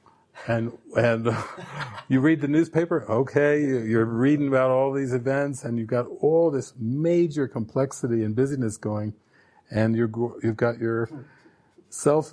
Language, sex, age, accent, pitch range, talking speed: English, male, 50-69, American, 115-135 Hz, 140 wpm